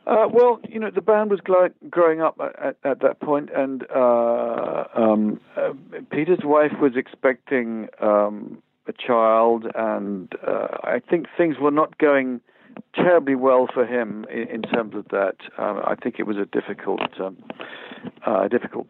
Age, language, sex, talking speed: 50-69, English, male, 165 wpm